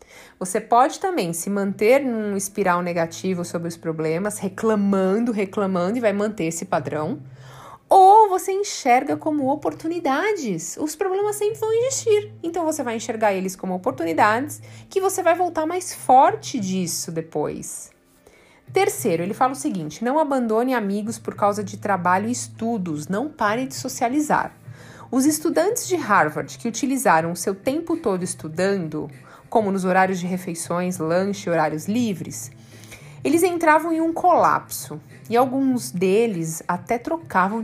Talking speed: 145 wpm